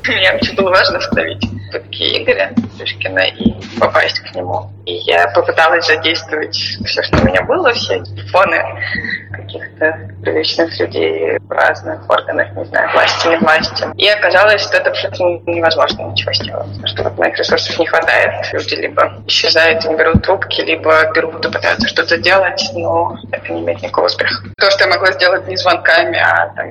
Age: 20-39